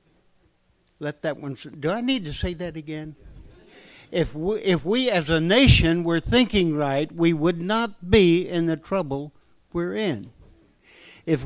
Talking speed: 150 wpm